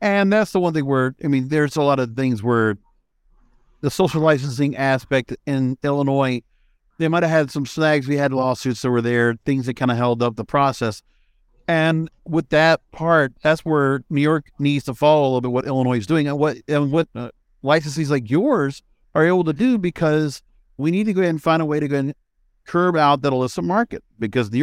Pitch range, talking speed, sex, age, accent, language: 130-160 Hz, 215 wpm, male, 50-69, American, English